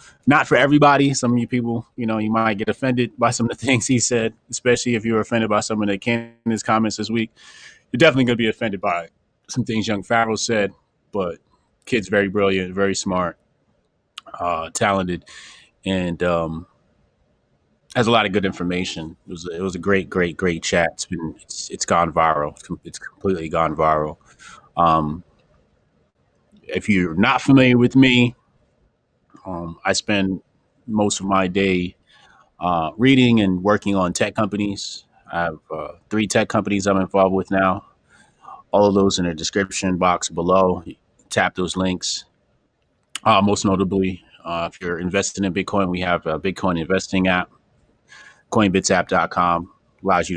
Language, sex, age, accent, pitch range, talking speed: English, male, 20-39, American, 90-110 Hz, 165 wpm